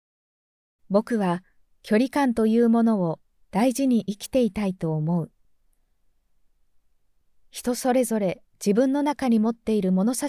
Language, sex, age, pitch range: Japanese, female, 20-39, 180-255 Hz